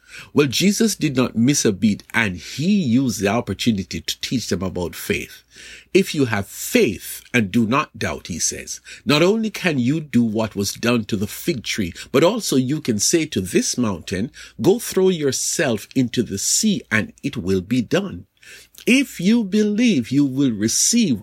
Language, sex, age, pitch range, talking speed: English, male, 50-69, 115-185 Hz, 180 wpm